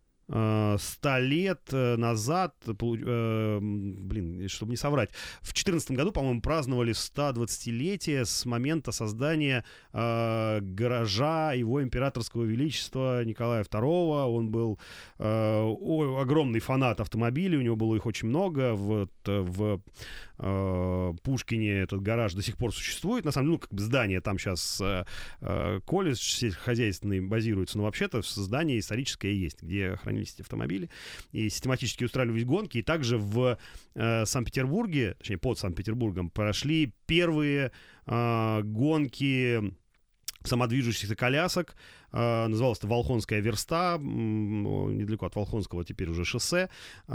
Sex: male